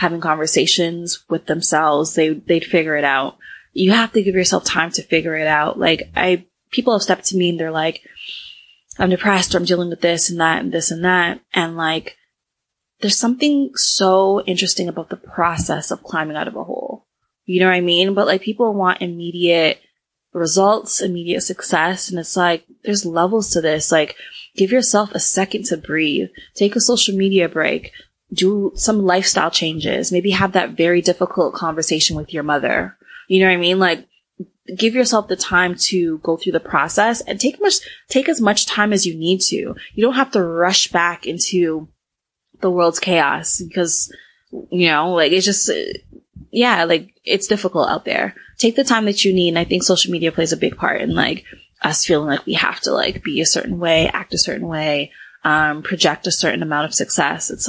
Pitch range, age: 165-195 Hz, 20-39